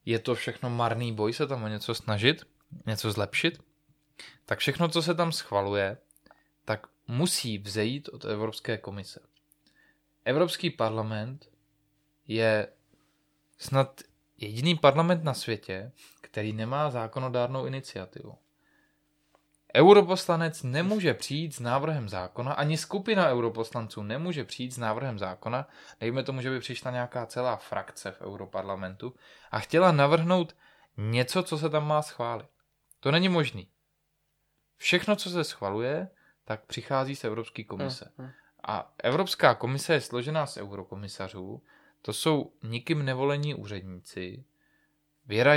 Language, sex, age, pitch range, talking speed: Czech, male, 20-39, 110-150 Hz, 125 wpm